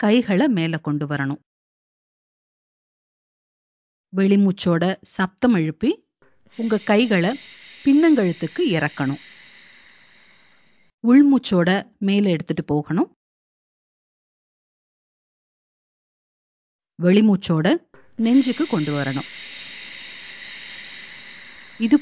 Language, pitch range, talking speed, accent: Tamil, 160-240 Hz, 55 wpm, native